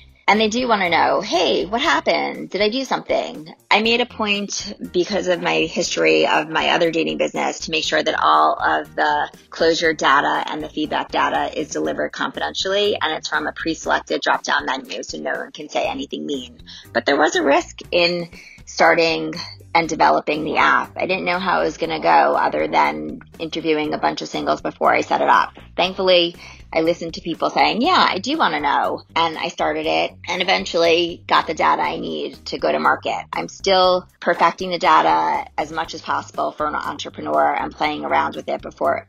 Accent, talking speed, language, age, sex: American, 205 wpm, English, 30-49, female